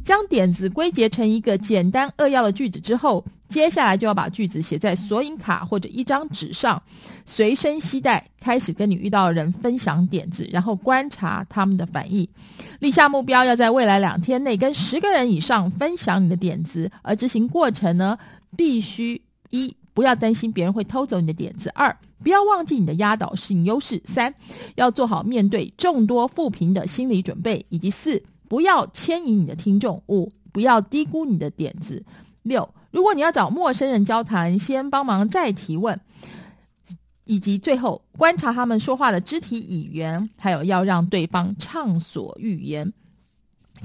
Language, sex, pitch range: Chinese, female, 185-255 Hz